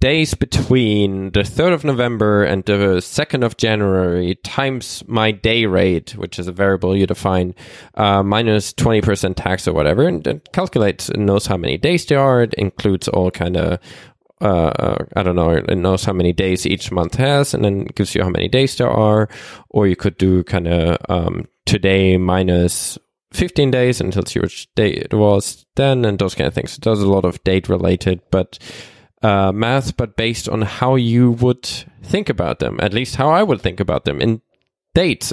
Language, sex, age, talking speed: English, male, 20-39, 200 wpm